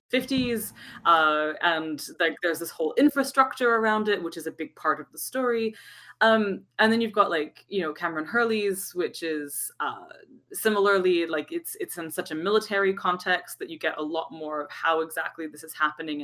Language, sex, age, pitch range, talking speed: English, female, 20-39, 160-210 Hz, 190 wpm